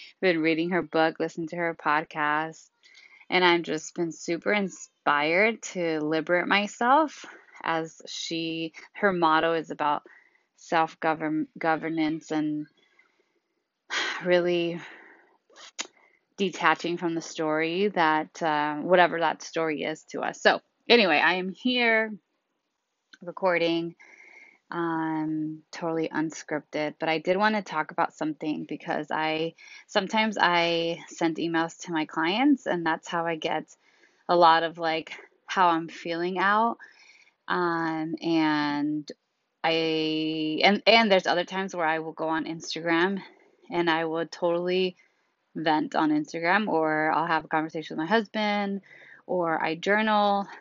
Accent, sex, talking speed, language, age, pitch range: American, female, 130 wpm, English, 20-39, 160-195 Hz